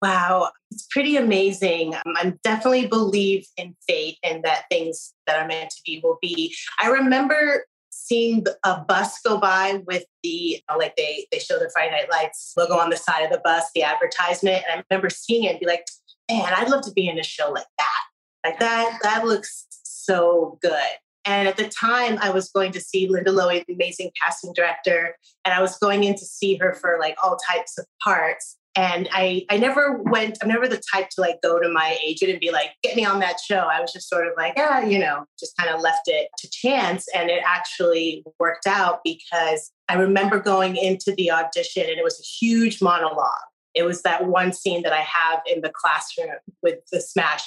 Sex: female